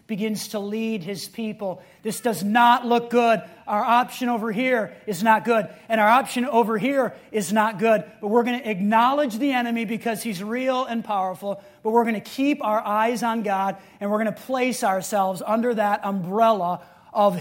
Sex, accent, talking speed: male, American, 195 wpm